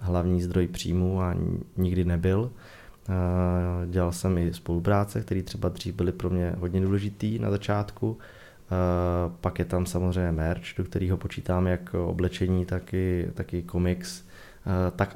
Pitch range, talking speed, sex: 90-95 Hz, 145 wpm, male